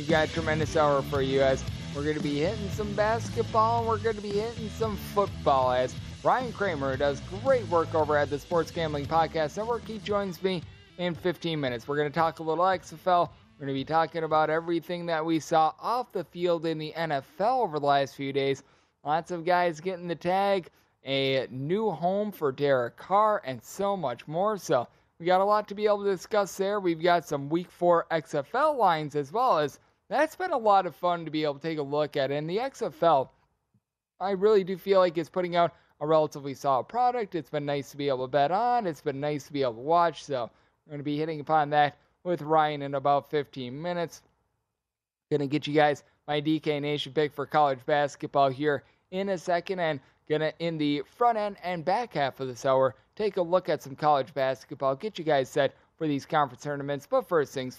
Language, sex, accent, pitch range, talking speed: English, male, American, 140-180 Hz, 220 wpm